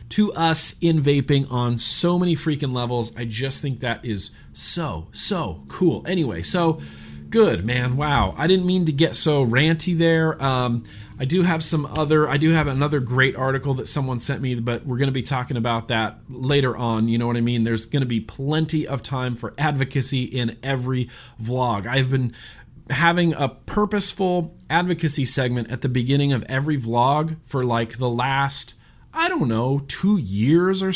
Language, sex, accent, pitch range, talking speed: English, male, American, 120-160 Hz, 180 wpm